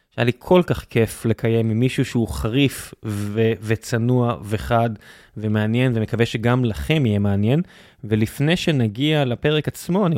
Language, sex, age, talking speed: Hebrew, male, 20-39, 140 wpm